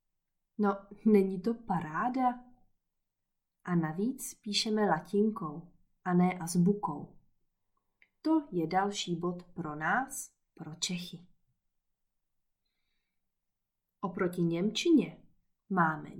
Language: Czech